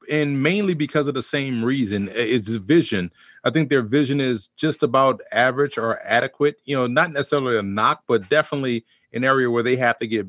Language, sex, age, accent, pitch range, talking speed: English, male, 30-49, American, 125-150 Hz, 200 wpm